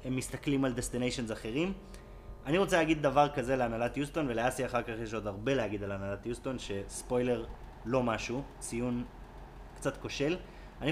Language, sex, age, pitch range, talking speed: Hebrew, male, 30-49, 120-160 Hz, 160 wpm